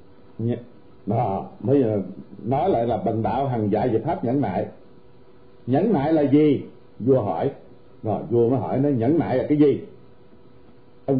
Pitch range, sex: 115-150 Hz, male